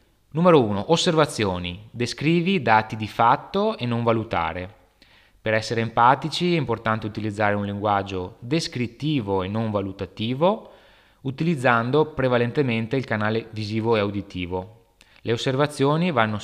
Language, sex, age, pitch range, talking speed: Italian, male, 20-39, 100-125 Hz, 115 wpm